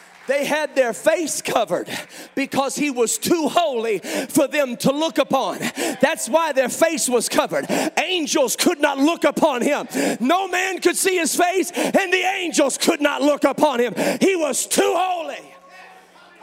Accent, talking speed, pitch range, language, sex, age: American, 165 wpm, 270-350 Hz, English, male, 40-59